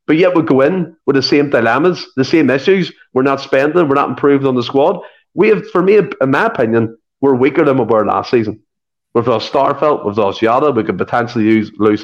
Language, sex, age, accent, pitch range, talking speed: English, male, 30-49, Irish, 110-155 Hz, 225 wpm